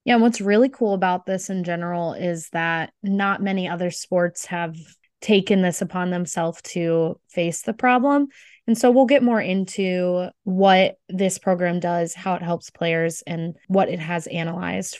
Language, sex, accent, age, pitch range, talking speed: English, female, American, 20-39, 180-220 Hz, 170 wpm